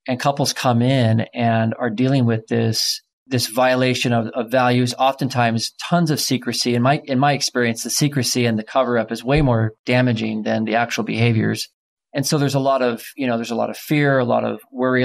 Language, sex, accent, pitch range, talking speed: English, male, American, 115-130 Hz, 215 wpm